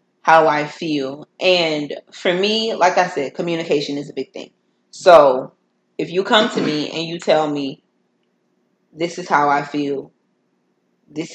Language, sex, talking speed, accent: English, female, 160 wpm, American